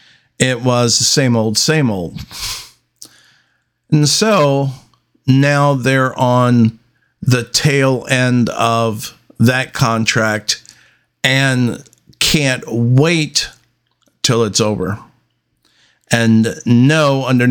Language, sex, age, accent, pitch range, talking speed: English, male, 50-69, American, 110-135 Hz, 95 wpm